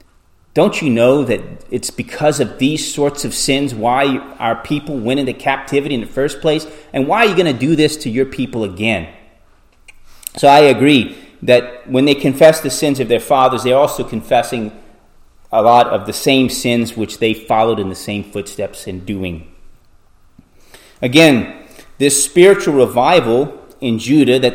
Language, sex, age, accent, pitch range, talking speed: English, male, 30-49, American, 100-140 Hz, 170 wpm